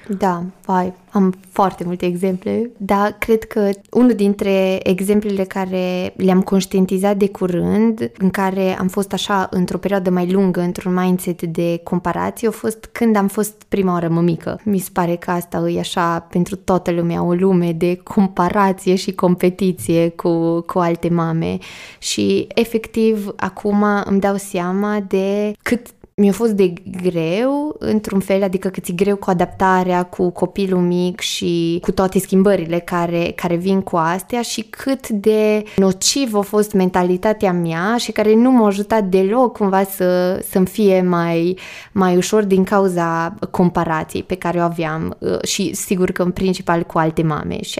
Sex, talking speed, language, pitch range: female, 160 wpm, Romanian, 180-205 Hz